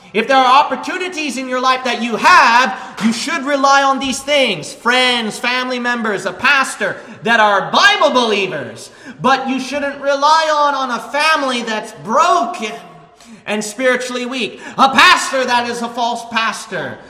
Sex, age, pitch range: male, 30-49, 220-275 Hz